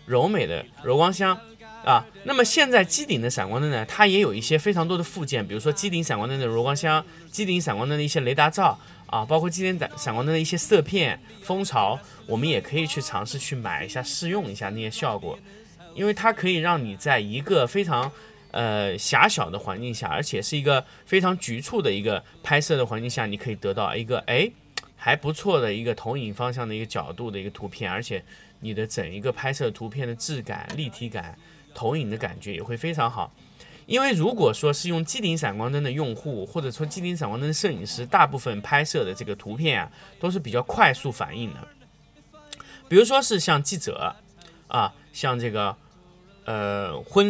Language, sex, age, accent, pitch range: Chinese, male, 20-39, native, 120-175 Hz